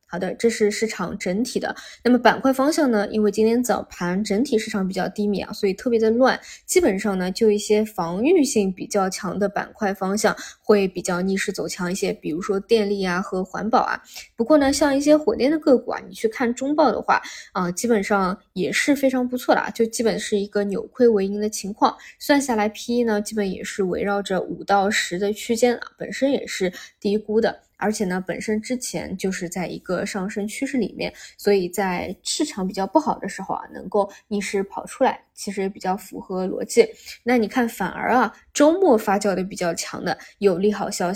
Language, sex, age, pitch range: Chinese, female, 20-39, 195-235 Hz